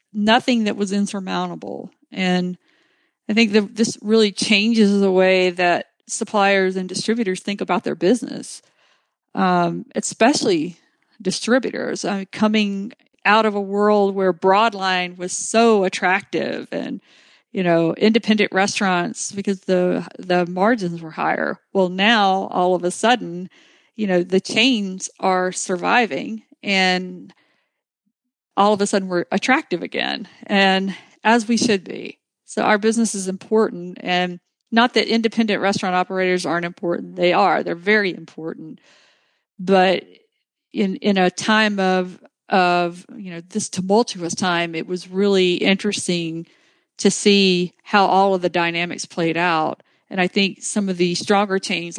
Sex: female